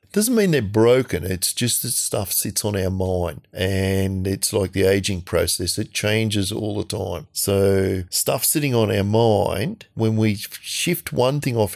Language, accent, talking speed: English, Australian, 180 wpm